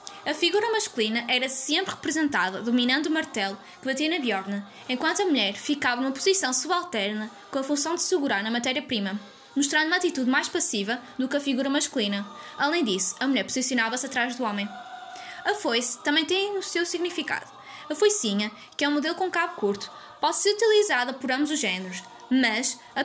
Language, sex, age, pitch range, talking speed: Portuguese, female, 10-29, 235-320 Hz, 180 wpm